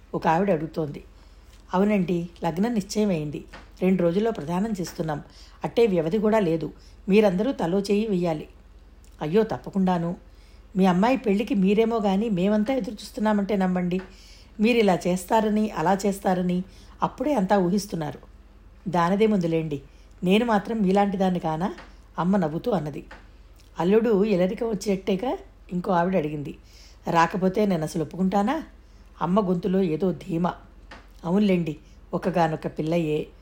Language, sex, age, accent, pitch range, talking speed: Telugu, female, 60-79, native, 165-210 Hz, 110 wpm